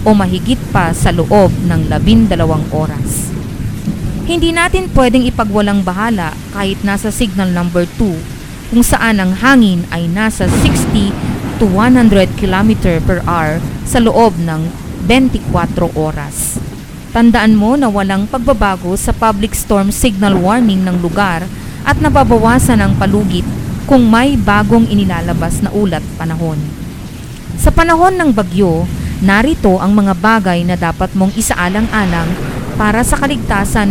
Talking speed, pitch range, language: 130 wpm, 175-225 Hz, Filipino